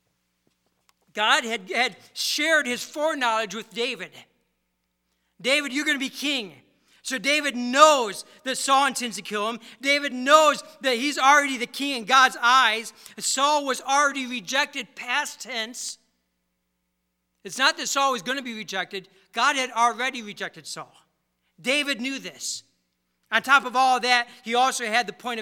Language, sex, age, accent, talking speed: English, male, 50-69, American, 155 wpm